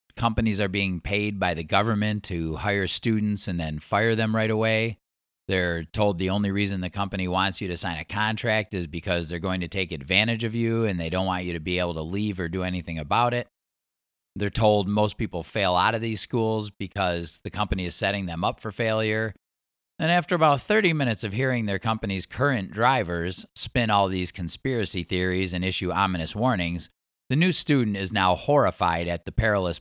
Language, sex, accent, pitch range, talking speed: English, male, American, 90-115 Hz, 200 wpm